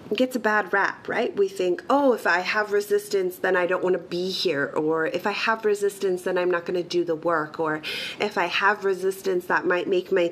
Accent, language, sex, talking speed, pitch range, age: American, English, female, 240 wpm, 180-250 Hz, 30-49